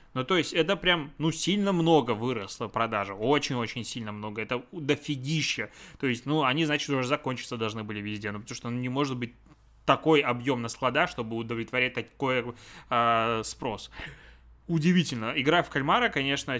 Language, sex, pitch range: Russian, male, 120-150 Hz